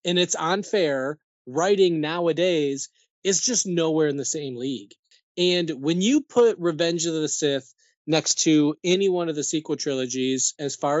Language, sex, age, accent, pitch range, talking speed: English, male, 20-39, American, 140-175 Hz, 165 wpm